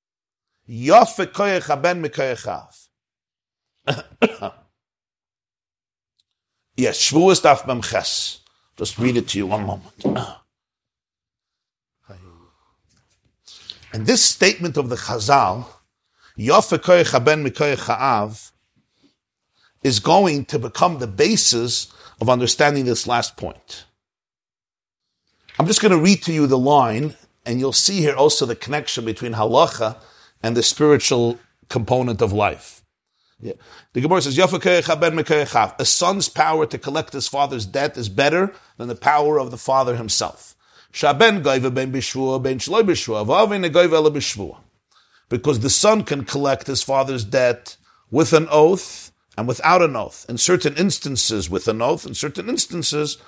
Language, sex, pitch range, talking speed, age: English, male, 110-155 Hz, 110 wpm, 50-69